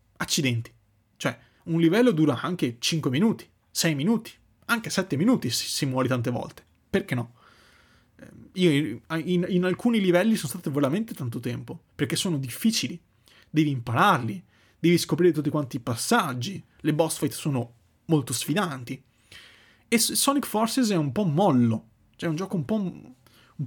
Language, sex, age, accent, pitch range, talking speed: Italian, male, 30-49, native, 120-165 Hz, 145 wpm